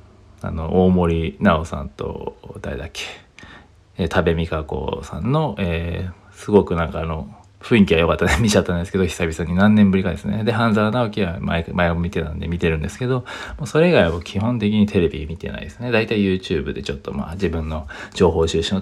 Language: Japanese